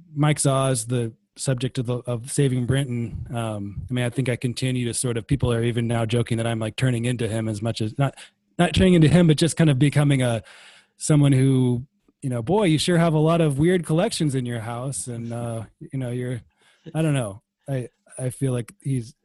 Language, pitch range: English, 115-140 Hz